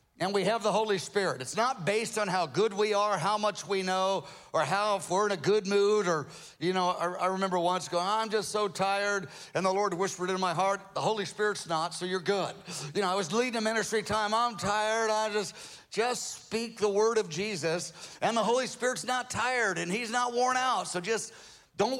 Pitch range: 170-215 Hz